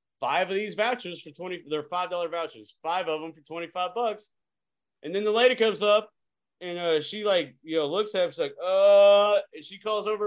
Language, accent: English, American